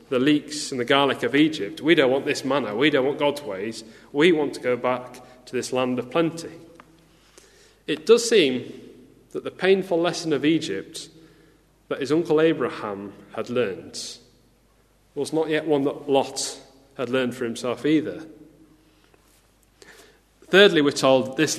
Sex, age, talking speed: male, 30-49, 160 wpm